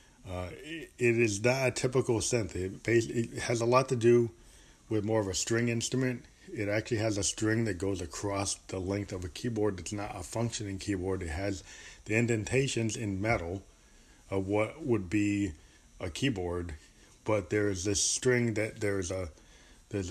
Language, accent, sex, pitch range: English, American, male, 90-110 Hz